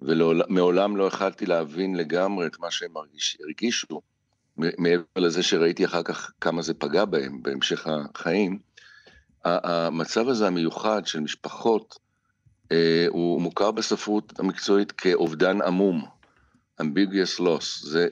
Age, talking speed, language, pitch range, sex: 60-79, 115 wpm, Hebrew, 80-105 Hz, male